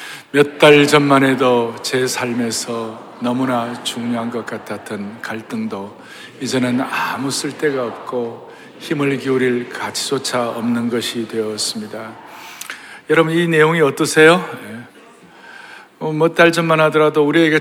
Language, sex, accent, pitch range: Korean, male, native, 120-155 Hz